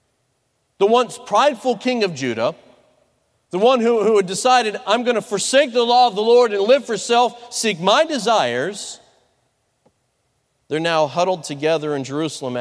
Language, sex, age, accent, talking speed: English, male, 40-59, American, 160 wpm